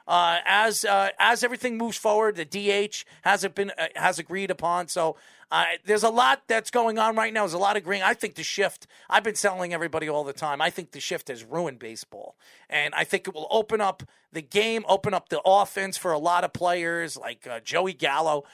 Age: 40-59